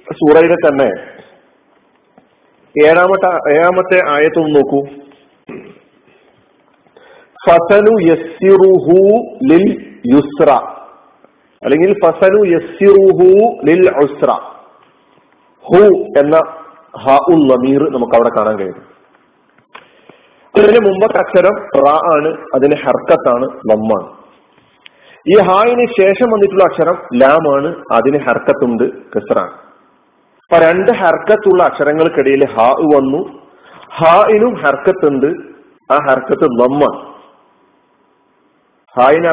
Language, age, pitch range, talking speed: Malayalam, 50-69, 150-215 Hz, 65 wpm